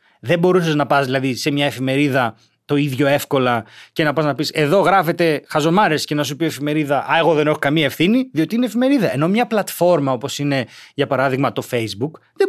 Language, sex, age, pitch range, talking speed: Greek, male, 30-49, 150-245 Hz, 205 wpm